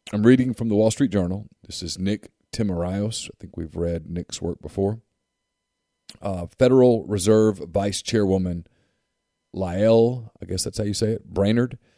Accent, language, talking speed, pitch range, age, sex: American, English, 160 wpm, 90-110 Hz, 40-59, male